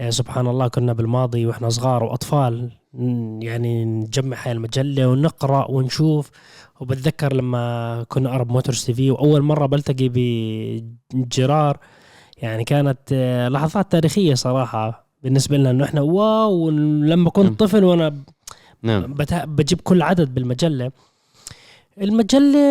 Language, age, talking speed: Arabic, 20-39, 110 wpm